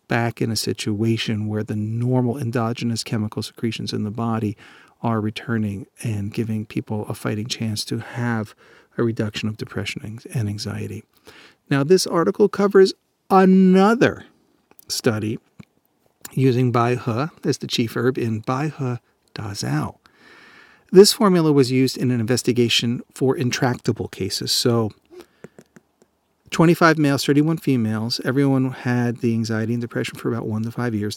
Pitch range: 115-140 Hz